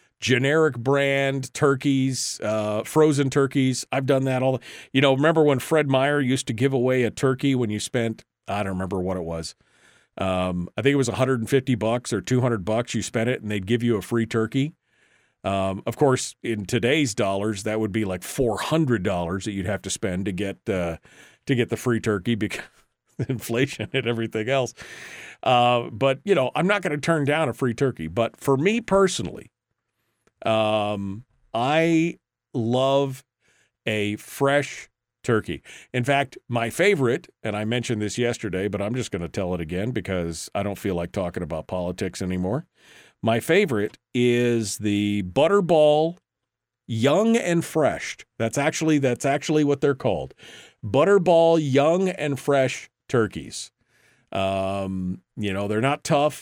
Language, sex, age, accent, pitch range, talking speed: English, male, 40-59, American, 105-135 Hz, 165 wpm